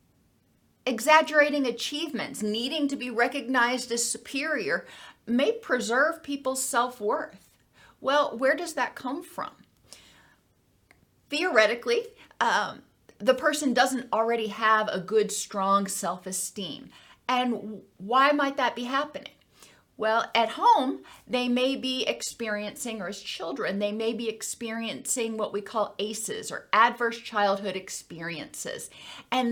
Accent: American